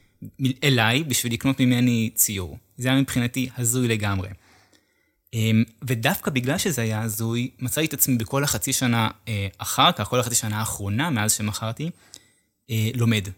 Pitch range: 105-125 Hz